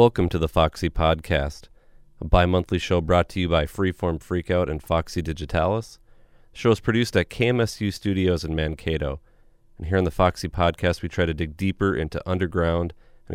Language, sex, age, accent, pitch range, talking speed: English, male, 30-49, American, 85-100 Hz, 180 wpm